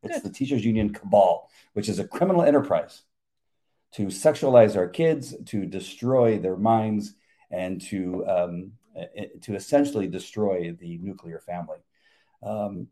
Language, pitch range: English, 90-110 Hz